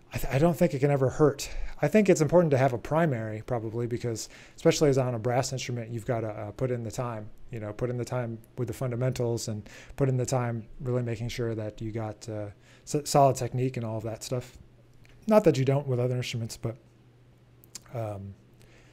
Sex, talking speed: male, 220 wpm